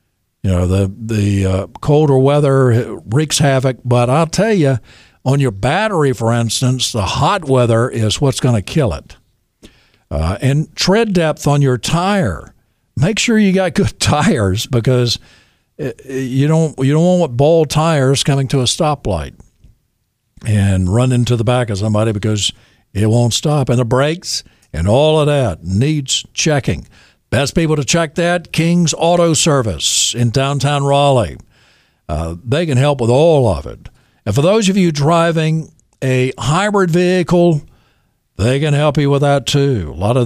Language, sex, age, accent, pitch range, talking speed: English, male, 60-79, American, 120-155 Hz, 165 wpm